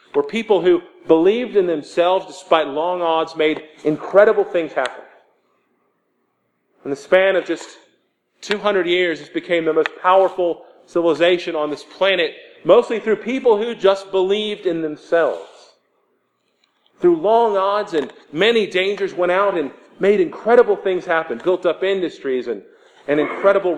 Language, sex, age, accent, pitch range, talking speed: English, male, 40-59, American, 160-215 Hz, 140 wpm